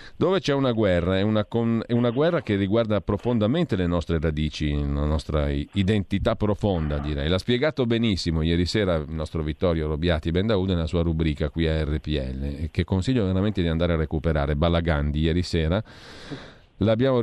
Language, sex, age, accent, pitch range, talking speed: Italian, male, 40-59, native, 80-105 Hz, 170 wpm